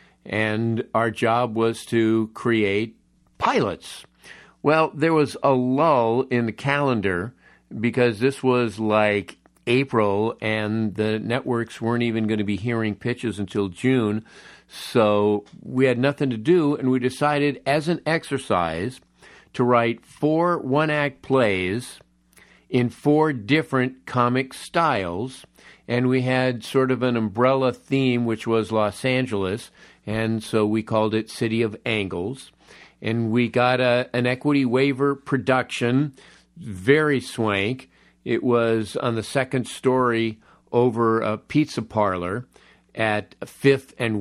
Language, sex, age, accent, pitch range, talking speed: English, male, 50-69, American, 110-130 Hz, 130 wpm